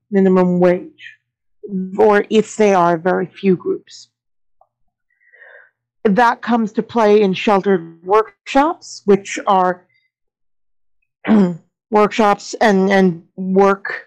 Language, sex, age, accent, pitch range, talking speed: English, female, 50-69, American, 185-225 Hz, 90 wpm